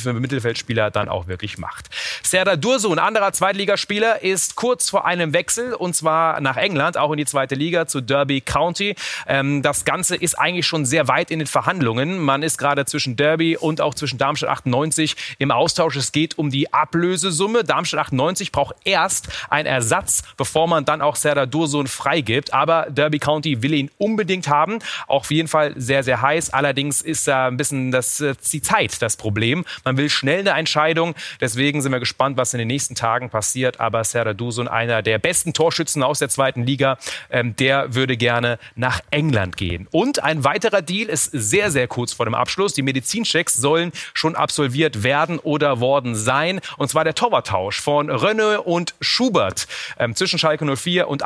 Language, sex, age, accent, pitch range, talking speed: German, male, 30-49, German, 130-165 Hz, 190 wpm